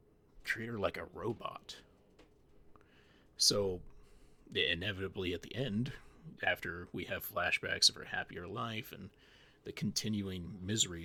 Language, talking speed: English, 120 wpm